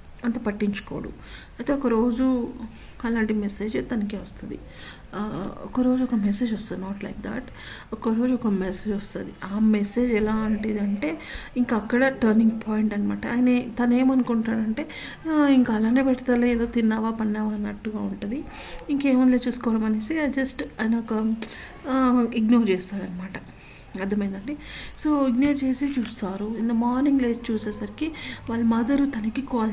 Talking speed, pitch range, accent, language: 120 wpm, 210-245 Hz, native, Telugu